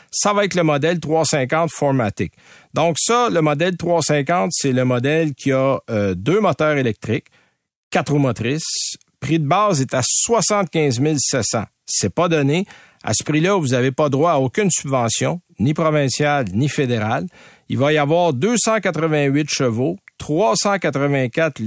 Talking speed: 150 wpm